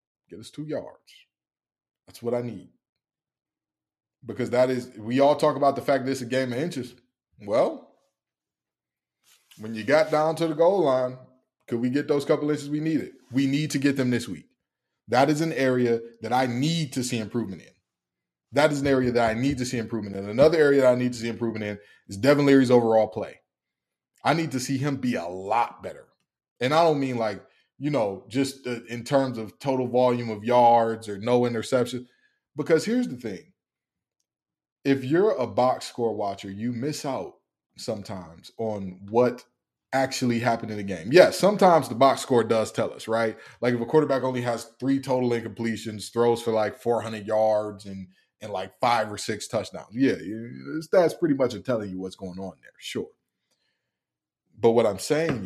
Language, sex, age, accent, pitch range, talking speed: English, male, 20-39, American, 110-135 Hz, 190 wpm